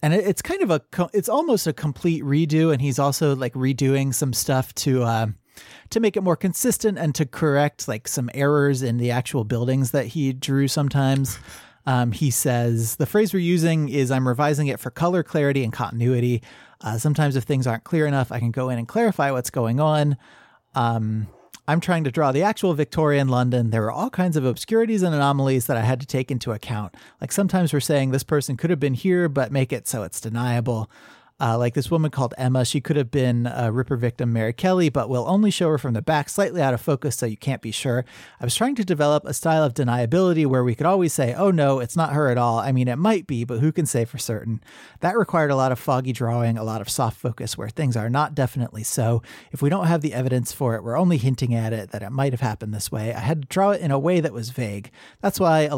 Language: English